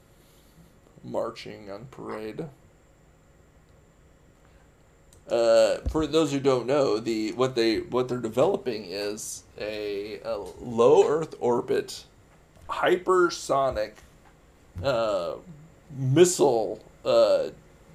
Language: English